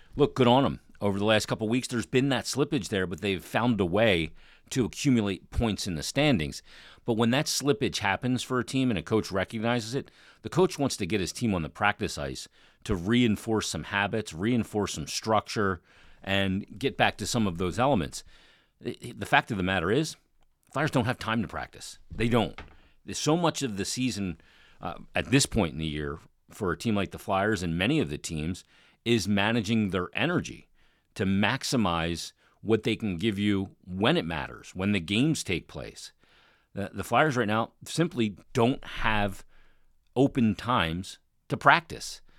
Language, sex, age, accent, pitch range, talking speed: English, male, 40-59, American, 95-120 Hz, 185 wpm